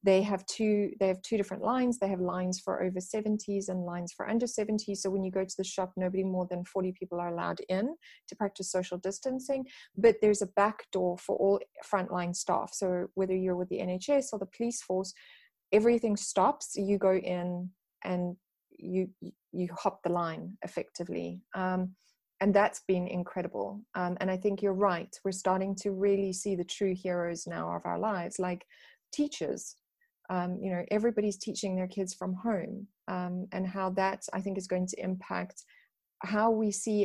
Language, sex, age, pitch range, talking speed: English, female, 30-49, 180-210 Hz, 190 wpm